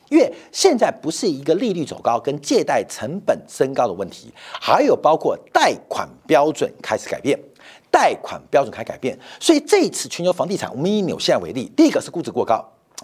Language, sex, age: Chinese, male, 50-69